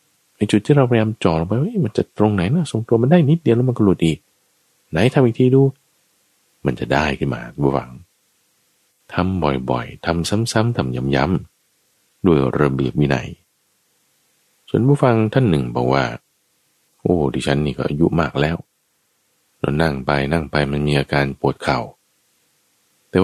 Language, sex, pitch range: Thai, male, 70-105 Hz